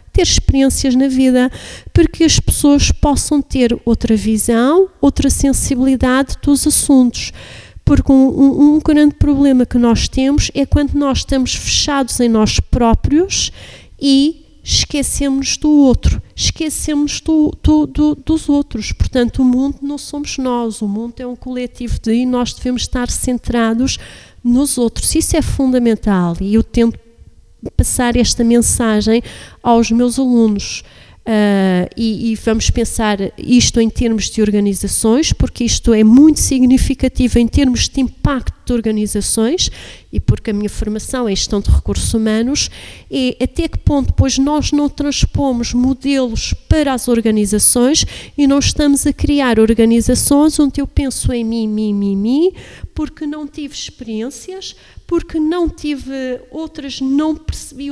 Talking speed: 145 wpm